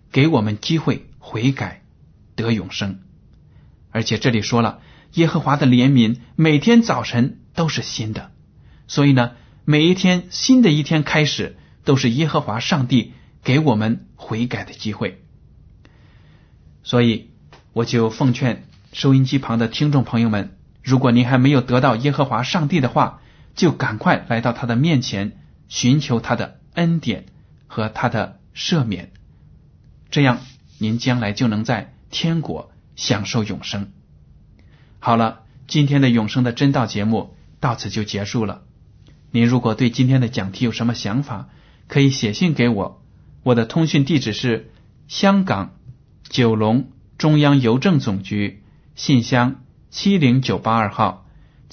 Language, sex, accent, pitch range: Chinese, male, native, 110-140 Hz